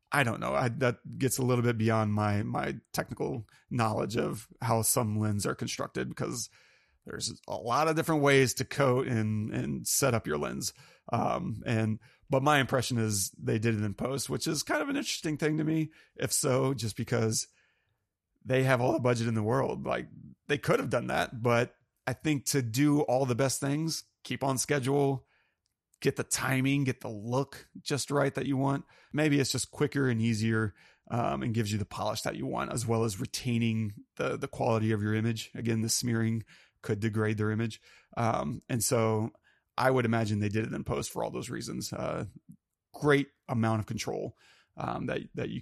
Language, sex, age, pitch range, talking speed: English, male, 30-49, 110-140 Hz, 200 wpm